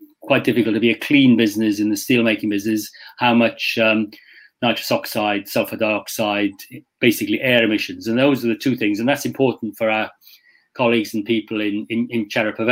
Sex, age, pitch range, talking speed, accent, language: male, 40-59, 110-135 Hz, 190 wpm, British, English